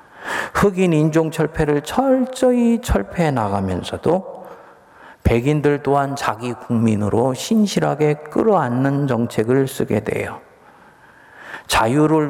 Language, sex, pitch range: Korean, male, 110-150 Hz